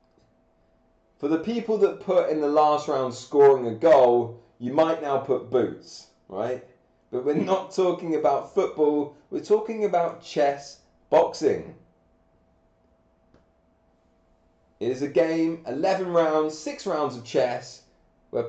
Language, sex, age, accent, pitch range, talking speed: English, male, 30-49, British, 125-170 Hz, 130 wpm